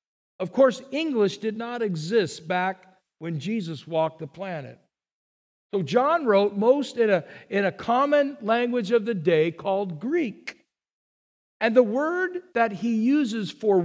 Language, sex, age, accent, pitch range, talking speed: English, male, 50-69, American, 180-260 Hz, 145 wpm